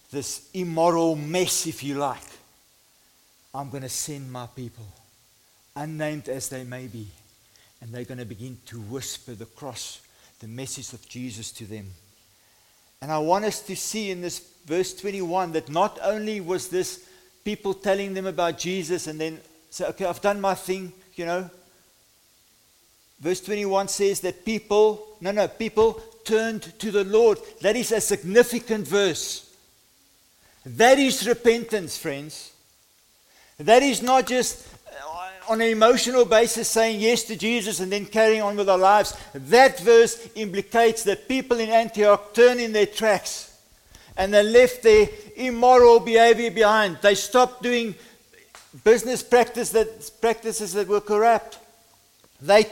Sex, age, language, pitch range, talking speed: male, 50-69, English, 155-225 Hz, 150 wpm